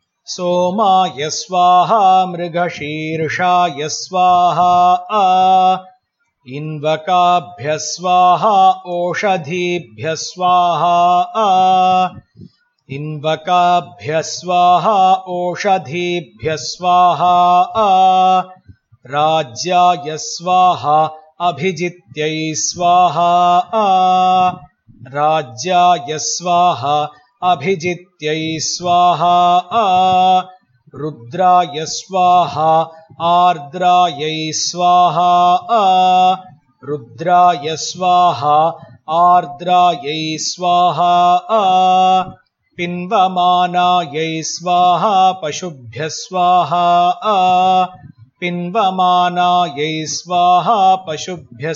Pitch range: 155-180 Hz